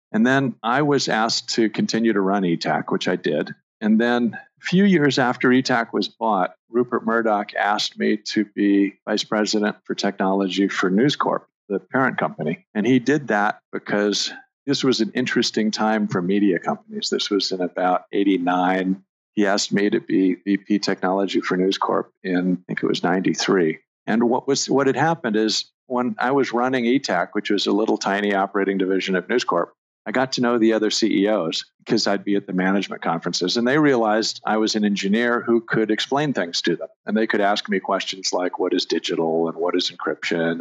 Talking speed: 200 wpm